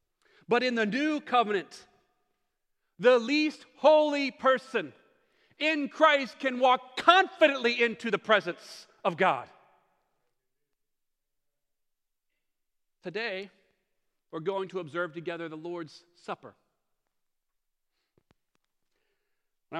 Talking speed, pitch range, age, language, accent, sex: 90 wpm, 160-265 Hz, 40-59, English, American, male